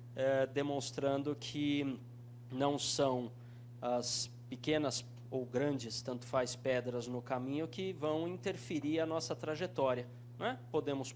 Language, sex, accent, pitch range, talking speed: Portuguese, male, Brazilian, 120-160 Hz, 115 wpm